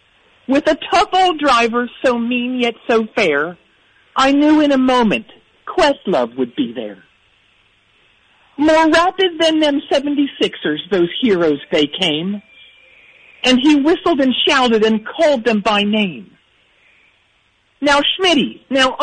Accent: American